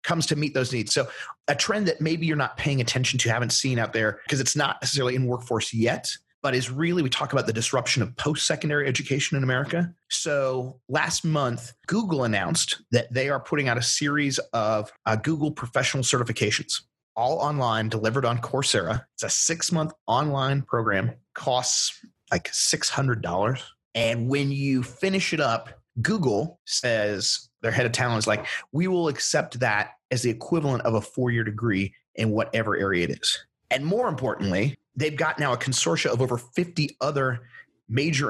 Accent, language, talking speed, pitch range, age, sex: American, English, 175 wpm, 115-150 Hz, 30-49, male